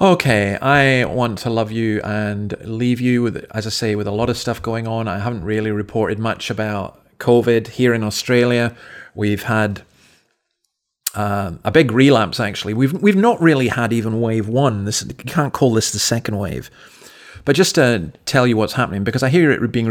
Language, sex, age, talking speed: English, male, 40-59, 195 wpm